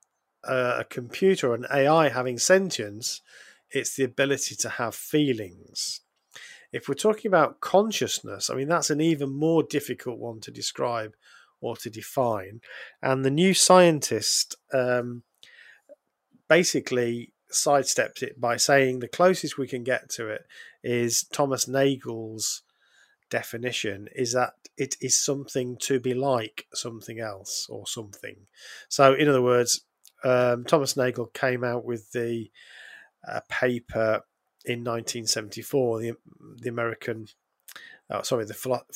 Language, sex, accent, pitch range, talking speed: English, male, British, 120-145 Hz, 135 wpm